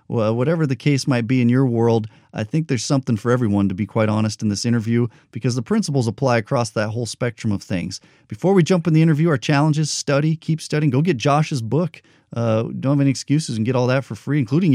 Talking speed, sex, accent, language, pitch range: 240 wpm, male, American, English, 115-145 Hz